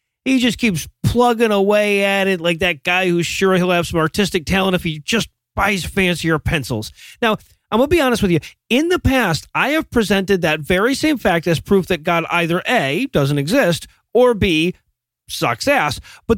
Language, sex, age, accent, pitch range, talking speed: English, male, 30-49, American, 160-225 Hz, 200 wpm